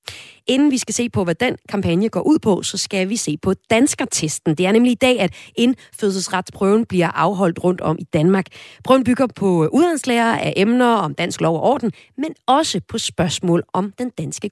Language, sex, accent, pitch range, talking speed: Danish, female, native, 165-235 Hz, 200 wpm